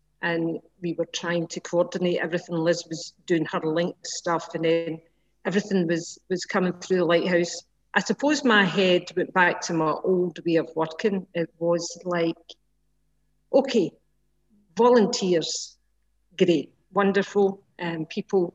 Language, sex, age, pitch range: English, female, 50-69, 165-200 Hz